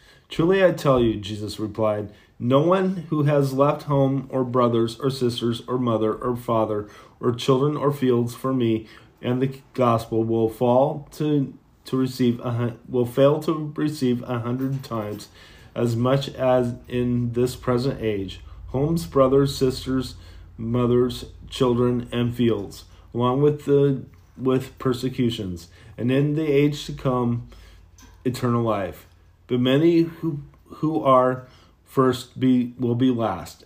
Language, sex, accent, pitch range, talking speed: English, male, American, 110-130 Hz, 140 wpm